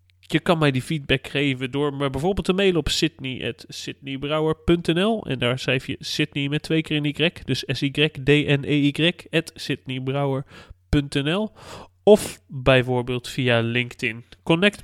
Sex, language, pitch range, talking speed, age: male, Dutch, 125-155 Hz, 140 wpm, 30-49